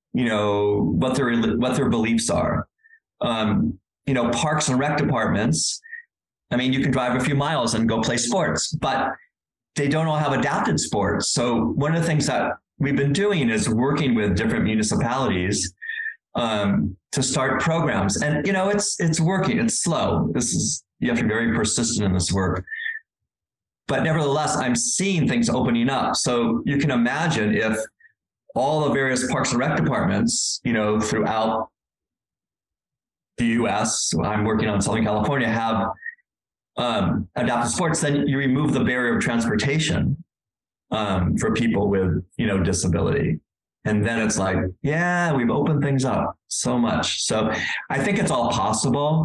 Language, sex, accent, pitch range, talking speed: English, male, American, 115-160 Hz, 165 wpm